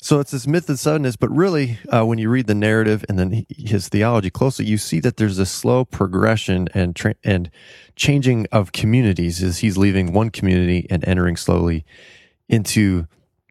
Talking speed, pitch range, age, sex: 180 wpm, 90-110 Hz, 20-39, male